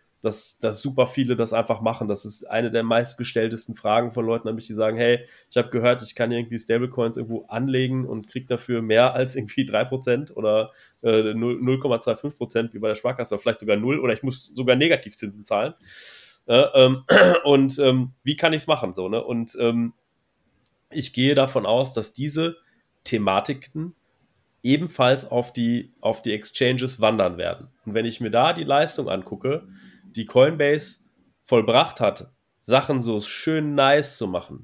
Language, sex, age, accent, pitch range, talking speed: German, male, 30-49, German, 115-145 Hz, 170 wpm